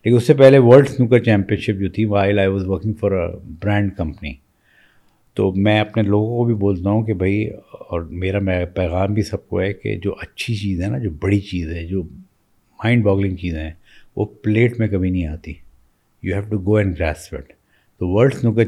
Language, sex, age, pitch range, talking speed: Urdu, male, 50-69, 90-105 Hz, 215 wpm